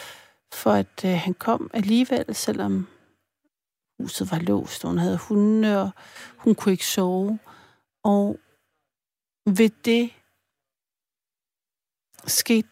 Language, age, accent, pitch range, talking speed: Danish, 60-79, native, 190-215 Hz, 110 wpm